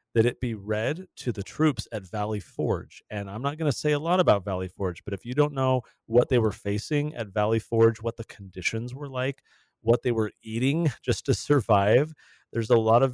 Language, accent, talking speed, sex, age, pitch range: English, American, 225 wpm, male, 30-49, 100-125 Hz